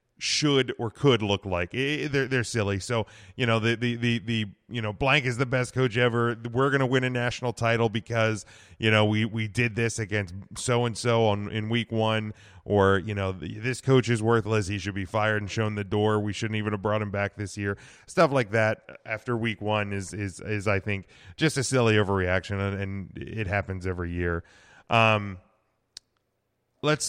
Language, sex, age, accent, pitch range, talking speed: English, male, 30-49, American, 105-120 Hz, 200 wpm